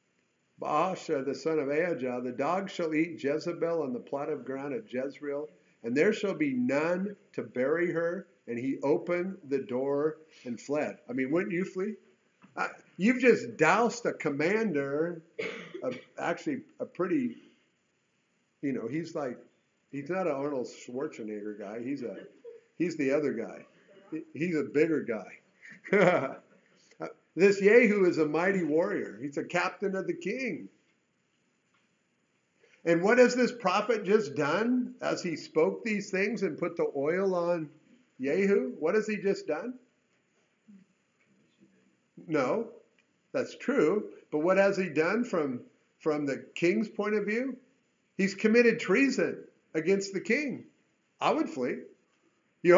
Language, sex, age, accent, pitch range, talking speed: English, male, 50-69, American, 155-220 Hz, 145 wpm